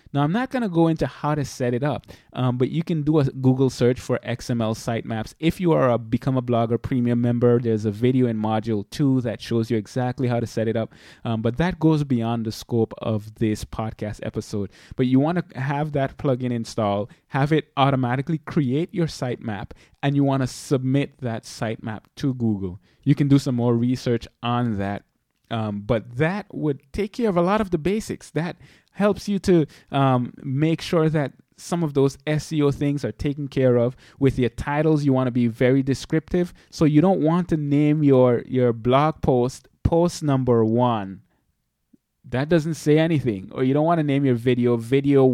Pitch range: 115-150 Hz